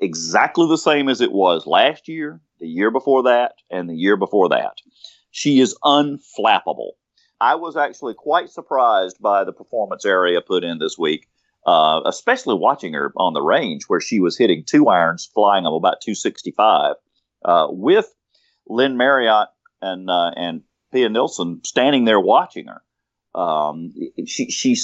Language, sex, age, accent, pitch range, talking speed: English, male, 40-59, American, 100-170 Hz, 155 wpm